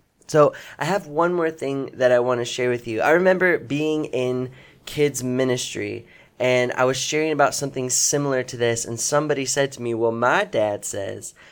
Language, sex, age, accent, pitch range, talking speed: English, male, 20-39, American, 115-145 Hz, 195 wpm